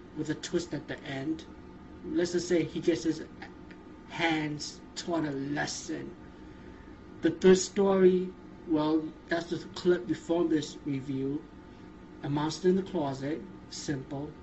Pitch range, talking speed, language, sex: 140-170 Hz, 135 wpm, English, male